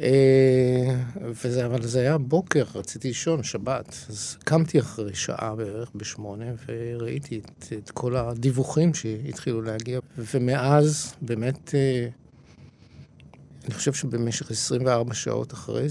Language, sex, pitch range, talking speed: English, male, 115-145 Hz, 105 wpm